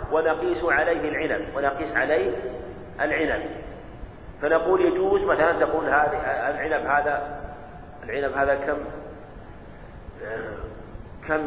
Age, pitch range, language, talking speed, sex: 40-59, 150-170 Hz, Arabic, 90 wpm, male